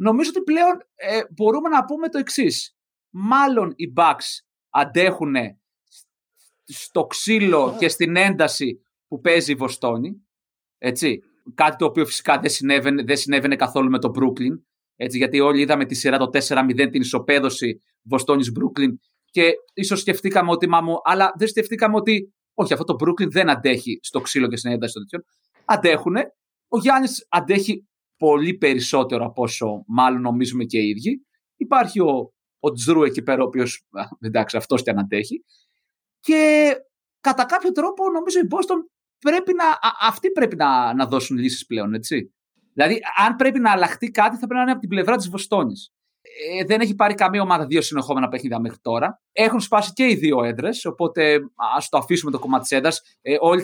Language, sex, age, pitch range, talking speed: Greek, male, 30-49, 140-230 Hz, 170 wpm